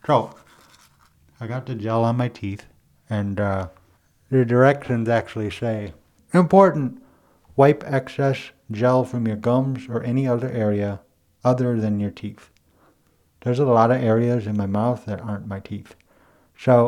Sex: male